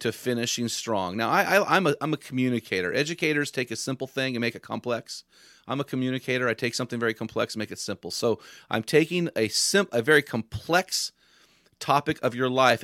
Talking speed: 185 wpm